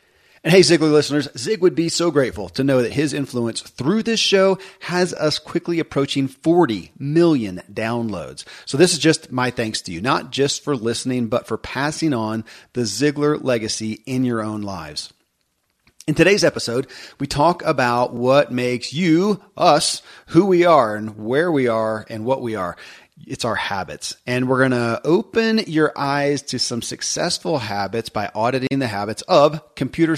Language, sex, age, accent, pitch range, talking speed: English, male, 40-59, American, 115-155 Hz, 175 wpm